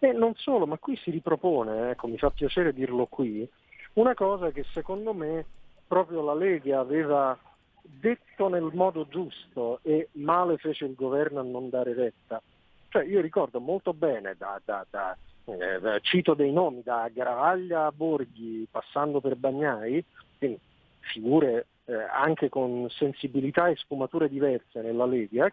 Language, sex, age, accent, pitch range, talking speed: Italian, male, 50-69, native, 130-180 Hz, 155 wpm